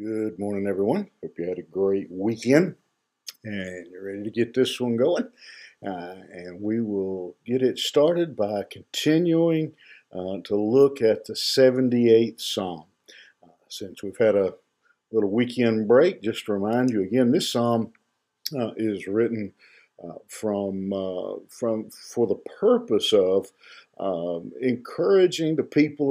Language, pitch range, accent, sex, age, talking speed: English, 100-135 Hz, American, male, 50-69, 145 wpm